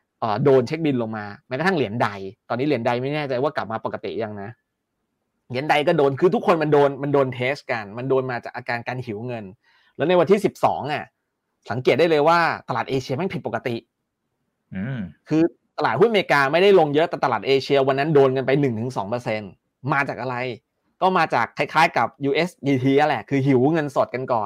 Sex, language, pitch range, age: male, Thai, 130-170 Hz, 20-39